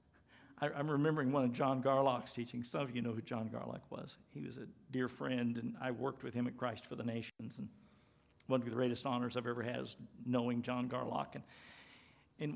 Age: 50-69